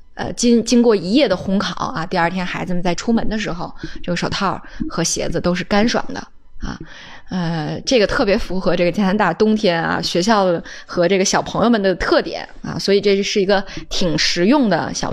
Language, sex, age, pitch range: Chinese, female, 10-29, 180-230 Hz